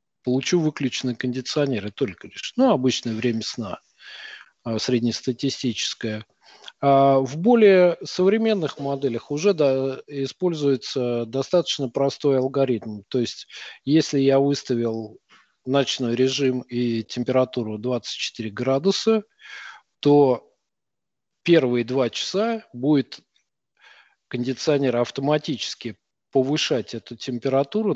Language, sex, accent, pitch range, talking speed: Russian, male, native, 125-150 Hz, 90 wpm